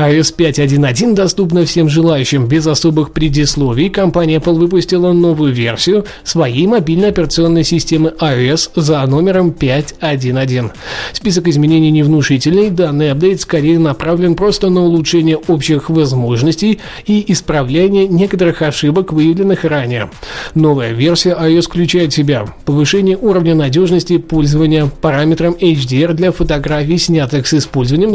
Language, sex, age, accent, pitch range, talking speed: Russian, male, 20-39, native, 145-180 Hz, 120 wpm